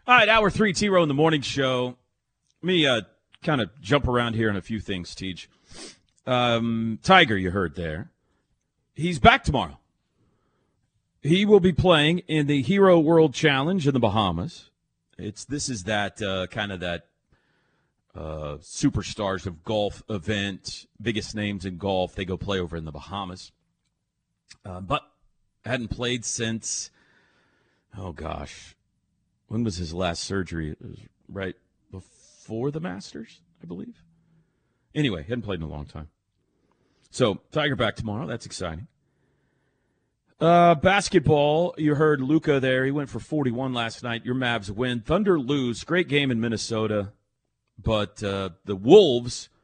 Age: 40-59